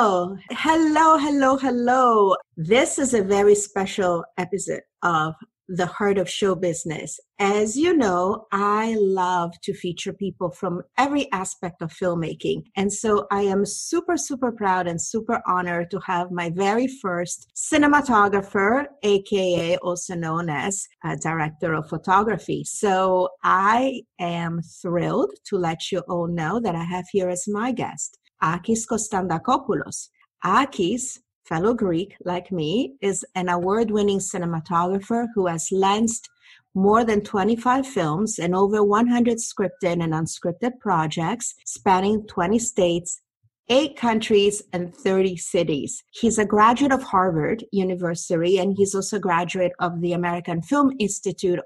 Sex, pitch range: female, 175-215 Hz